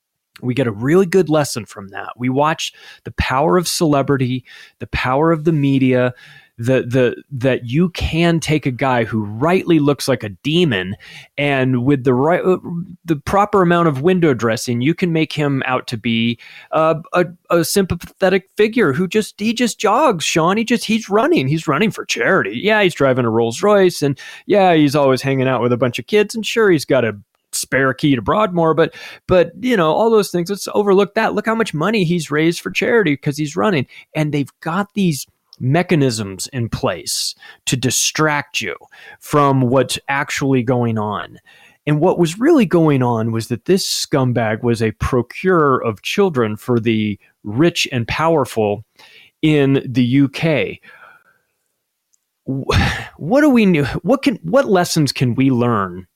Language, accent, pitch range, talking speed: English, American, 125-180 Hz, 175 wpm